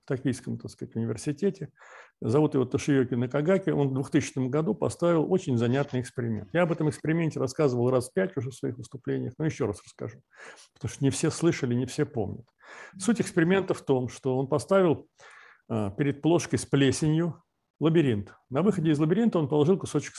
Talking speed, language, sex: 180 wpm, Russian, male